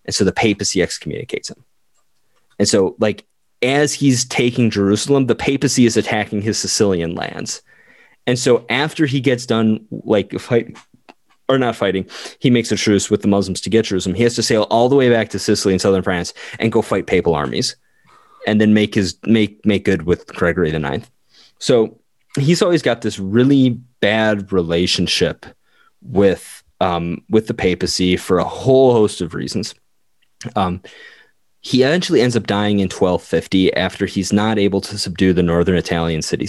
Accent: American